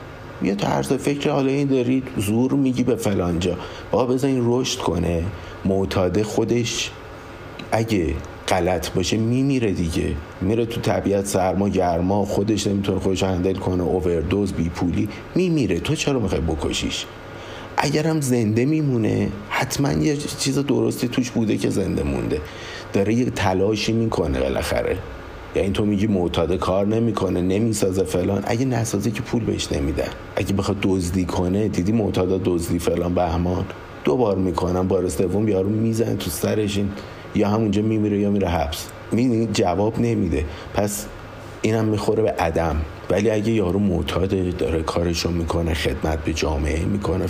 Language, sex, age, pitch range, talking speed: Persian, male, 50-69, 90-110 Hz, 145 wpm